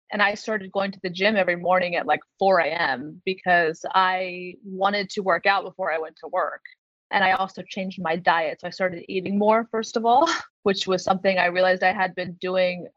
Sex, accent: female, American